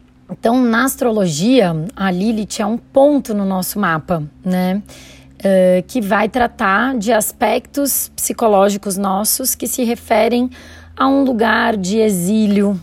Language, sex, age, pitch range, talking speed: Portuguese, female, 30-49, 195-250 Hz, 125 wpm